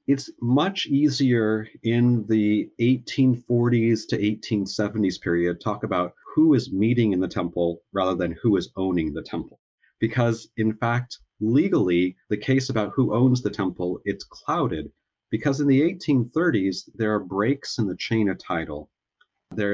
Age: 40-59